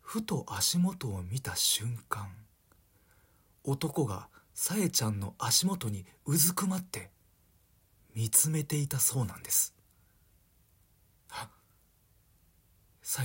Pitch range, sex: 90-130 Hz, male